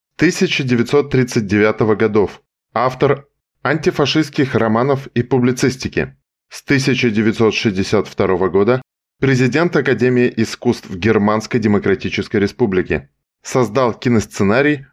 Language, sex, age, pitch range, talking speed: Russian, male, 20-39, 110-135 Hz, 70 wpm